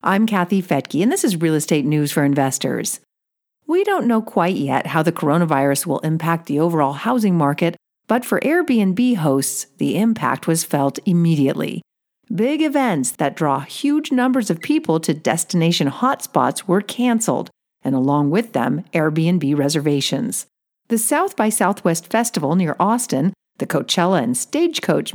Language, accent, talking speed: English, American, 155 wpm